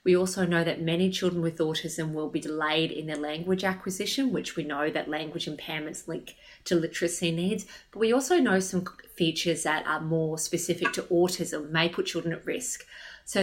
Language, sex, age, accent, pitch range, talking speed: English, female, 30-49, Australian, 160-195 Hz, 190 wpm